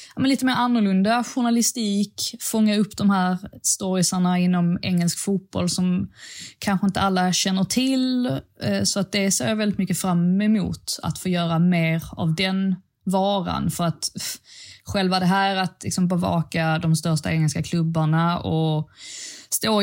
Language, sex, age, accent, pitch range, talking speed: Swedish, female, 20-39, native, 165-200 Hz, 140 wpm